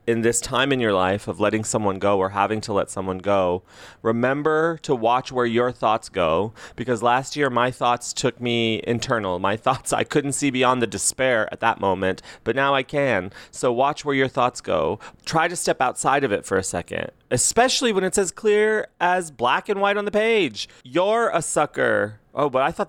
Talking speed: 210 wpm